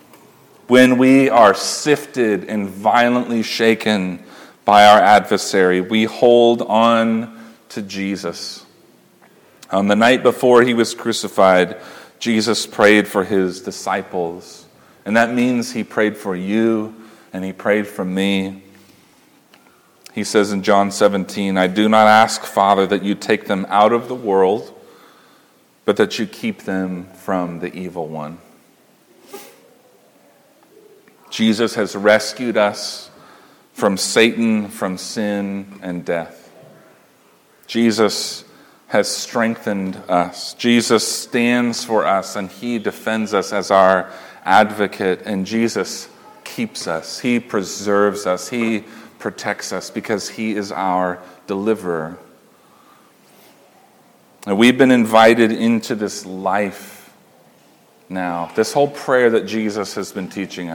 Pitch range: 95-115 Hz